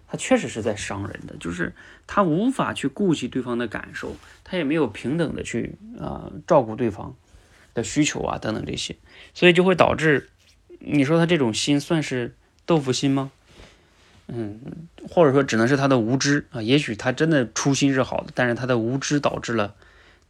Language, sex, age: Chinese, male, 20-39